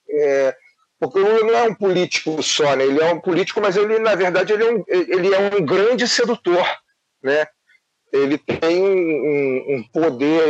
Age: 40-59